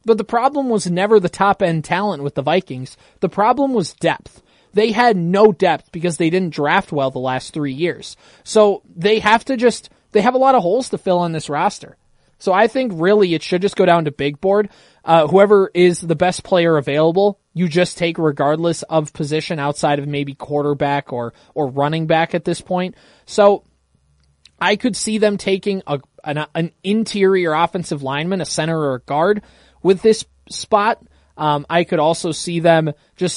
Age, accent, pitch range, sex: 20-39, American, 155-205 Hz, male